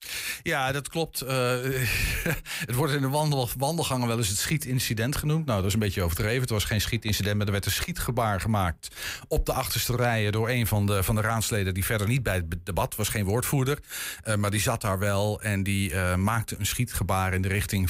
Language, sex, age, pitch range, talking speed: Dutch, male, 50-69, 100-130 Hz, 220 wpm